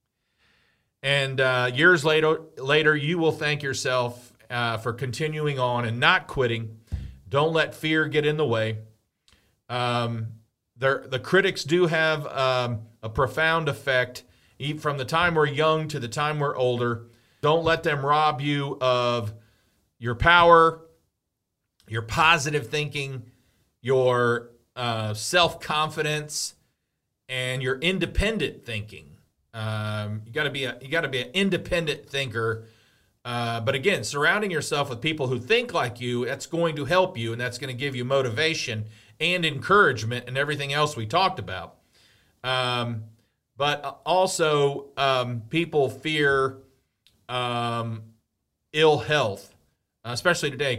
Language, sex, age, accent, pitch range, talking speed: English, male, 40-59, American, 115-150 Hz, 135 wpm